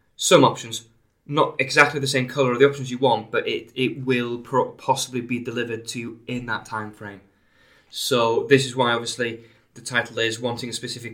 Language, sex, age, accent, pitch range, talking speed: English, male, 20-39, British, 110-135 Hz, 195 wpm